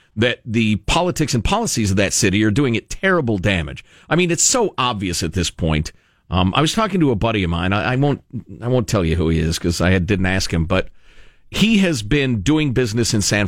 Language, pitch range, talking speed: English, 90-140 Hz, 225 wpm